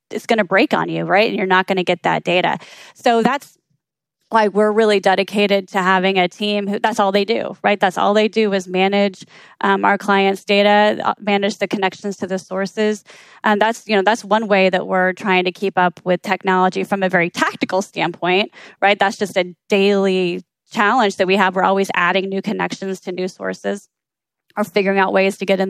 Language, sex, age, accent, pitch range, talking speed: English, female, 20-39, American, 190-215 Hz, 210 wpm